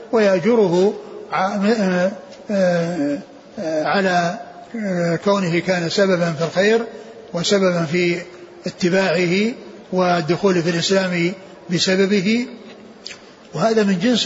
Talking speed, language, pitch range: 70 wpm, Arabic, 175-205 Hz